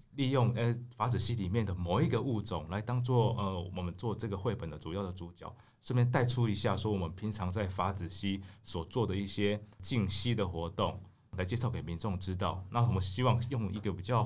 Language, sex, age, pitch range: Chinese, male, 20-39, 95-120 Hz